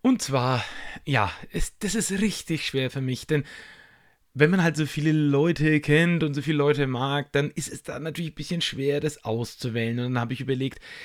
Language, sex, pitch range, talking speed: German, male, 140-165 Hz, 205 wpm